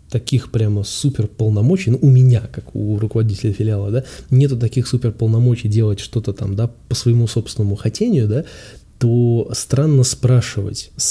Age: 20-39